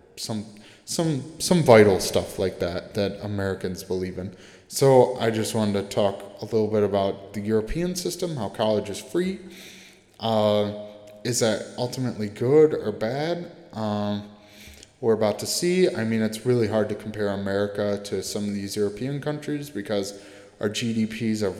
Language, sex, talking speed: English, male, 160 wpm